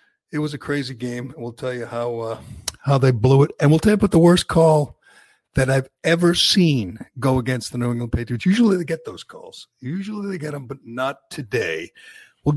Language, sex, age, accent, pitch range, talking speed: English, male, 50-69, American, 120-160 Hz, 215 wpm